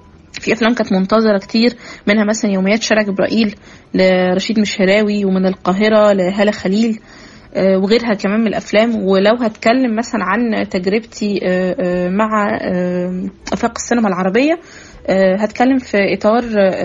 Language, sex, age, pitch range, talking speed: Arabic, female, 20-39, 185-220 Hz, 115 wpm